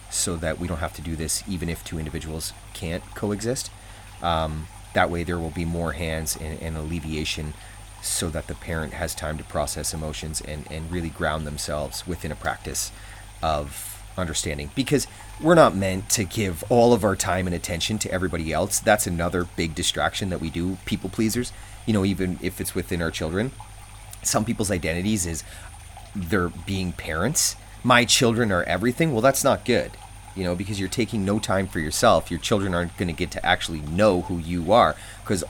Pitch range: 85-105 Hz